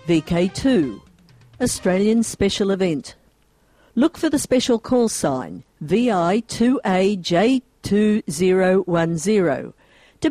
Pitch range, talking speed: 165-210 Hz, 70 wpm